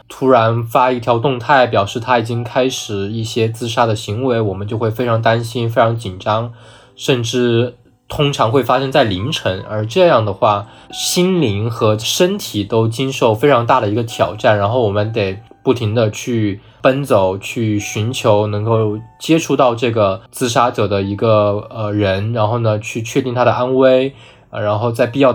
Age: 20-39